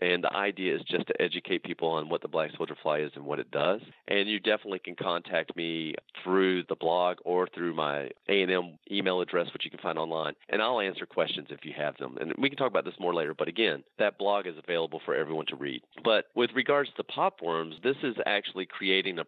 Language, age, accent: English, 40-59, American